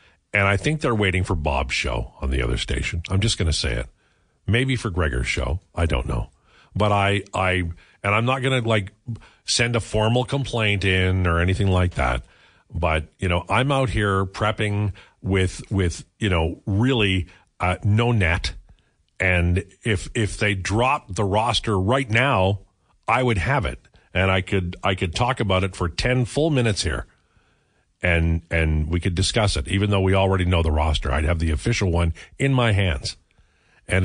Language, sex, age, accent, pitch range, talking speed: English, male, 50-69, American, 85-115 Hz, 185 wpm